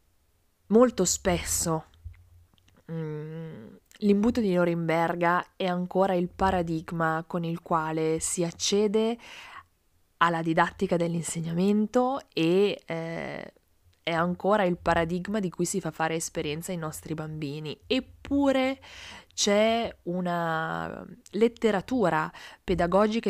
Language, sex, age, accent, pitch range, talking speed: Italian, female, 20-39, native, 160-200 Hz, 95 wpm